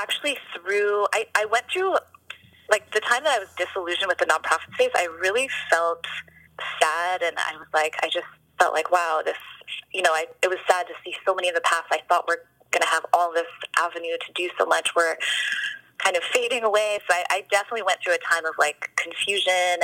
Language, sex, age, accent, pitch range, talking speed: English, female, 20-39, American, 165-200 Hz, 220 wpm